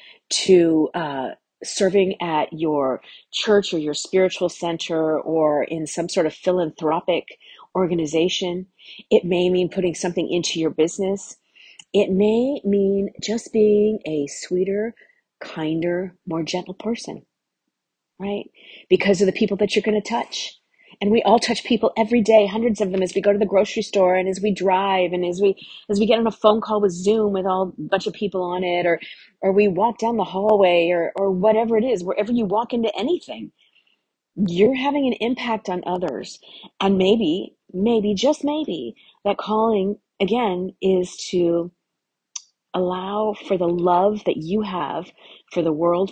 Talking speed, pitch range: 170 wpm, 175-215 Hz